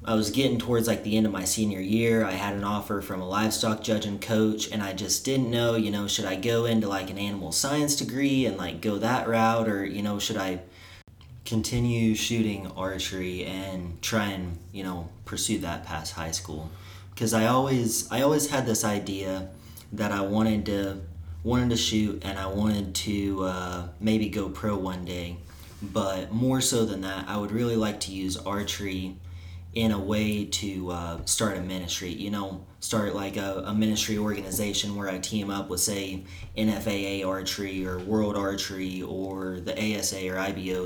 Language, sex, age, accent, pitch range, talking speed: English, male, 30-49, American, 95-110 Hz, 190 wpm